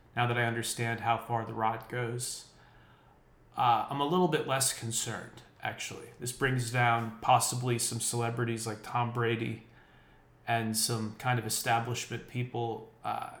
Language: English